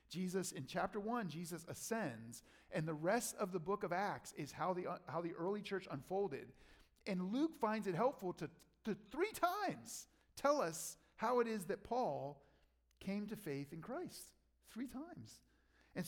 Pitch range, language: 135-215 Hz, English